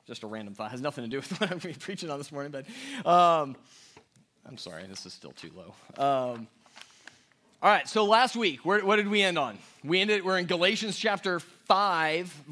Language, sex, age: English, male, 30-49